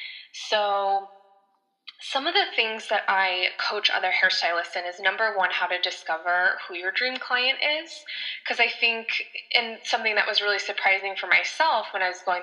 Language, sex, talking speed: English, female, 180 wpm